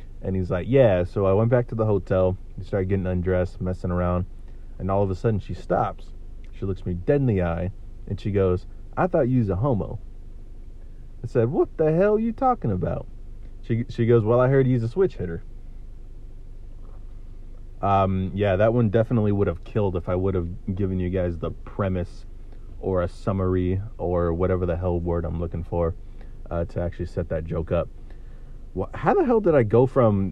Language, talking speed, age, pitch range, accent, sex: English, 200 wpm, 30-49, 95-115 Hz, American, male